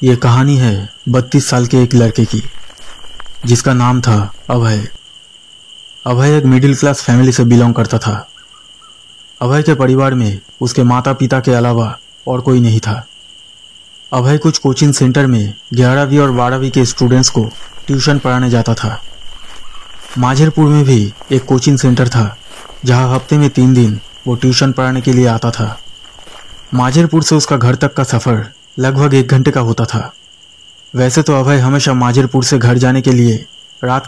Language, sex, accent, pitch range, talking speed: Hindi, male, native, 120-135 Hz, 165 wpm